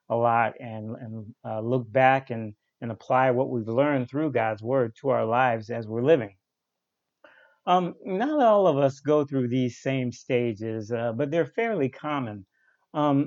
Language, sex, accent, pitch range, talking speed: English, male, American, 120-150 Hz, 170 wpm